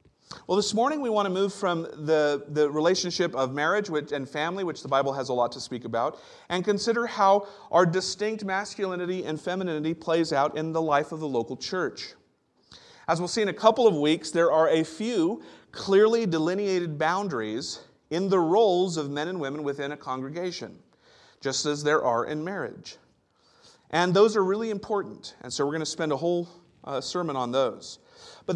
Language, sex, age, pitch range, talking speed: English, male, 40-59, 150-200 Hz, 190 wpm